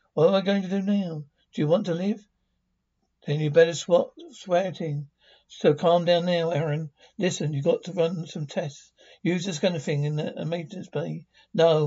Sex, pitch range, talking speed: male, 150-185 Hz, 205 wpm